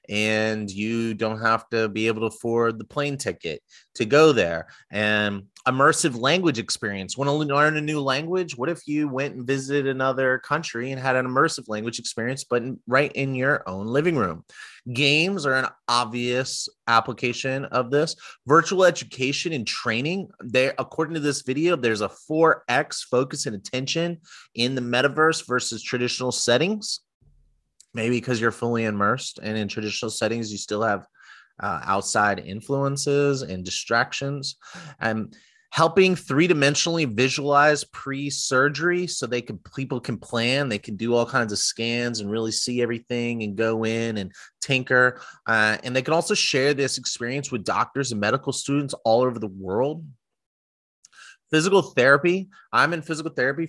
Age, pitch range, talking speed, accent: 30-49, 115-145 Hz, 160 wpm, American